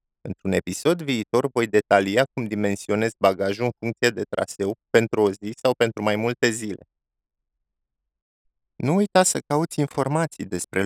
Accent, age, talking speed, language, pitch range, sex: native, 20-39, 145 wpm, Romanian, 100-125 Hz, male